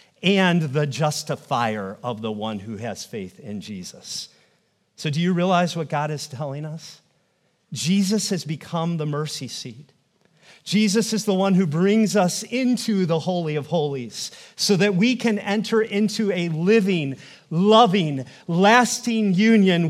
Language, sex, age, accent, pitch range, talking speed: English, male, 40-59, American, 150-195 Hz, 150 wpm